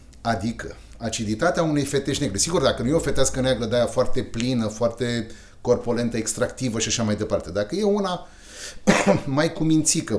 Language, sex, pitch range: Romanian, male, 100-135 Hz